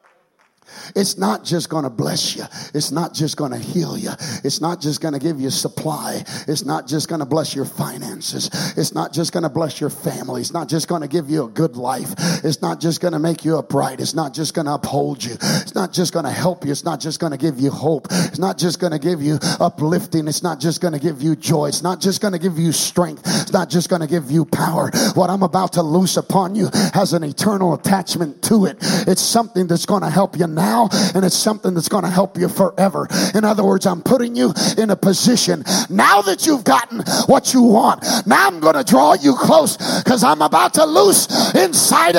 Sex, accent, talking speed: male, American, 240 wpm